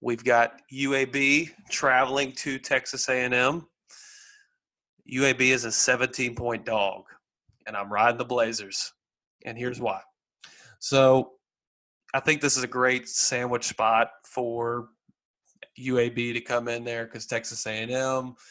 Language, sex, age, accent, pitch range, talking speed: English, male, 30-49, American, 115-135 Hz, 125 wpm